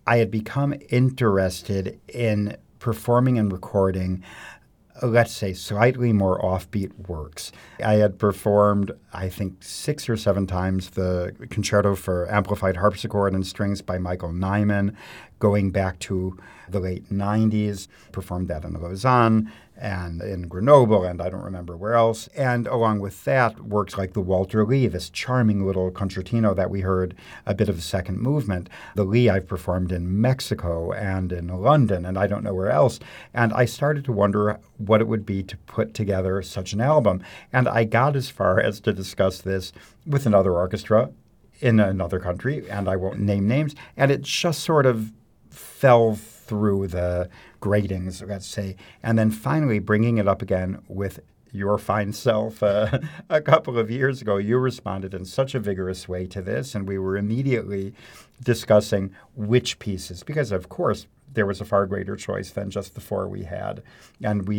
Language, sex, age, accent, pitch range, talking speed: English, male, 50-69, American, 95-115 Hz, 170 wpm